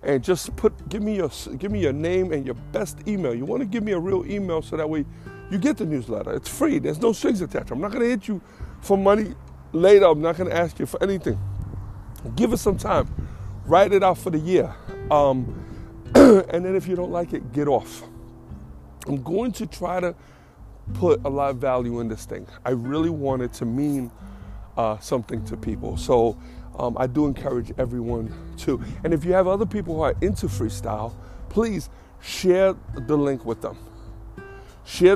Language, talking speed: English, 205 wpm